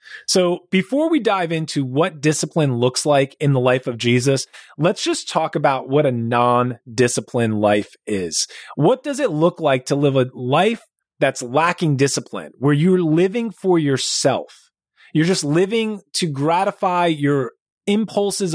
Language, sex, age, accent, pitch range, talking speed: English, male, 30-49, American, 135-185 Hz, 150 wpm